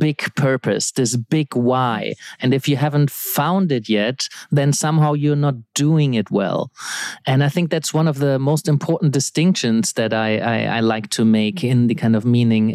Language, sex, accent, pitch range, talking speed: English, male, German, 120-155 Hz, 195 wpm